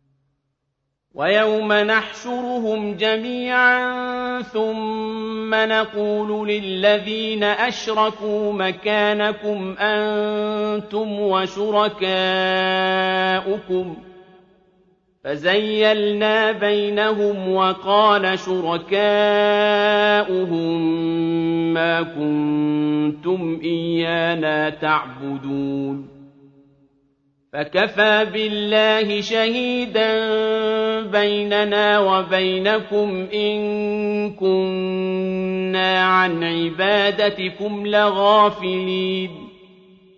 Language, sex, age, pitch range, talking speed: Arabic, male, 50-69, 170-210 Hz, 40 wpm